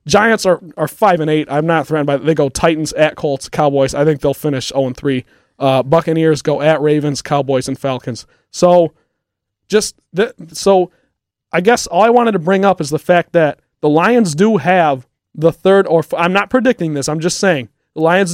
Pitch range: 150-180 Hz